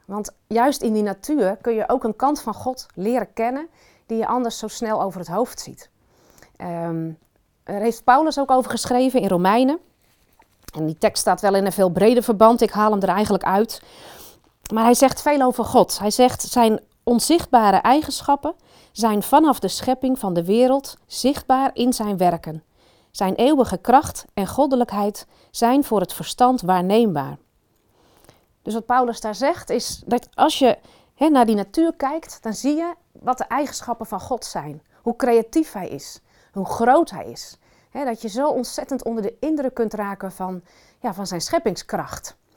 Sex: female